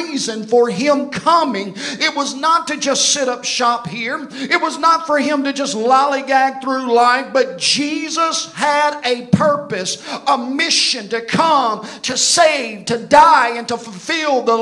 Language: English